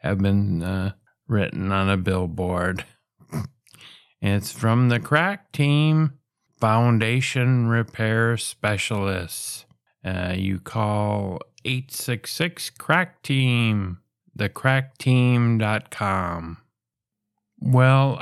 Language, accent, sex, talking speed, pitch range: English, American, male, 70 wpm, 105-130 Hz